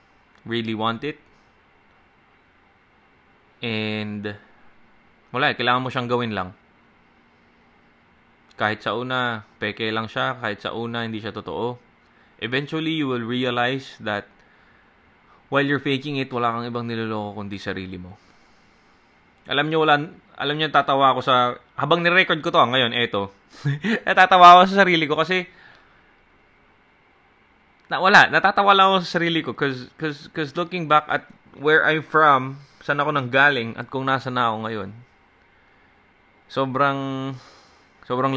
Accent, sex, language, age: native, male, Filipino, 20-39